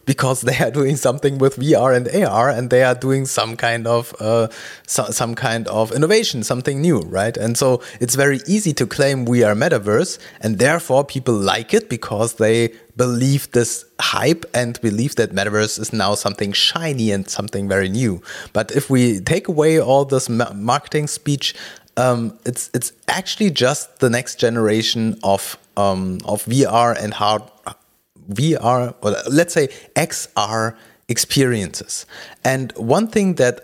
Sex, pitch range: male, 110-135 Hz